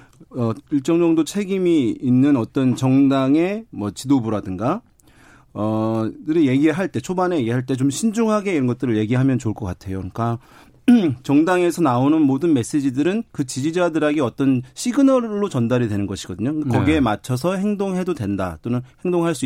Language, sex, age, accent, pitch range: Korean, male, 40-59, native, 115-155 Hz